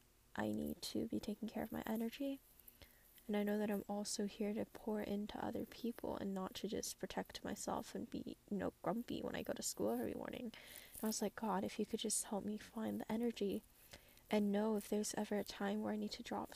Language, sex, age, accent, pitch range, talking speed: English, female, 10-29, American, 210-235 Hz, 235 wpm